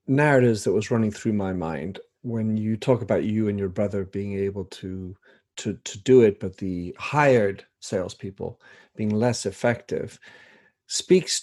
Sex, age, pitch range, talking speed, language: male, 50-69, 110-130 Hz, 160 wpm, English